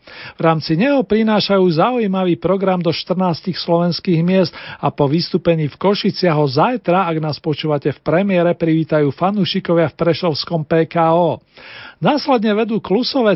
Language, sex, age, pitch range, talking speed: Slovak, male, 40-59, 160-195 Hz, 135 wpm